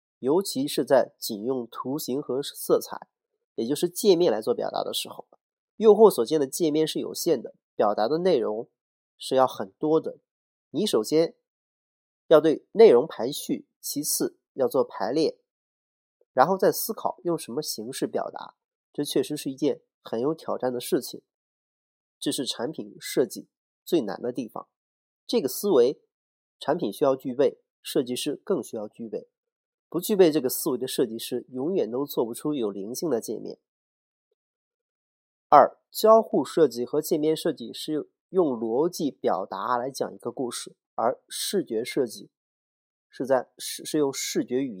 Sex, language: male, Chinese